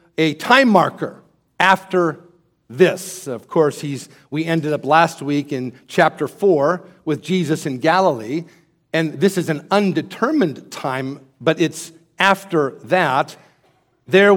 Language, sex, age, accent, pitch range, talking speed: English, male, 50-69, American, 145-185 Hz, 130 wpm